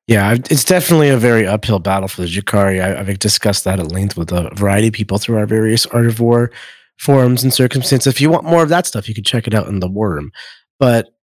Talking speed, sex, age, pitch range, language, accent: 245 wpm, male, 30-49, 95-125 Hz, English, American